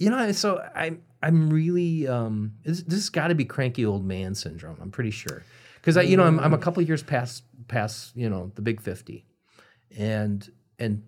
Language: English